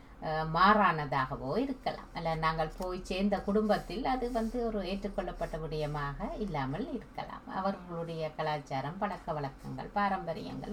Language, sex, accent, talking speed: English, female, Indian, 115 wpm